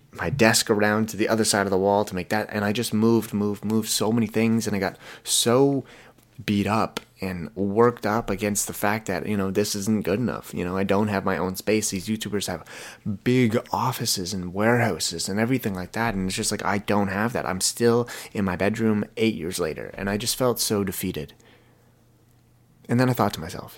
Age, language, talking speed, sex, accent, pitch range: 30-49, English, 220 wpm, male, American, 100-120 Hz